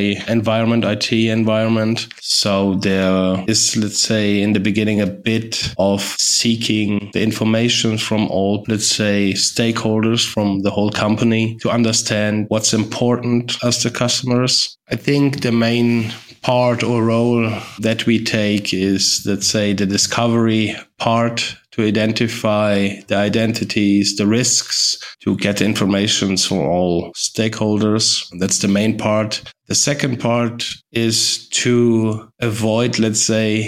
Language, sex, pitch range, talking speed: English, male, 100-115 Hz, 130 wpm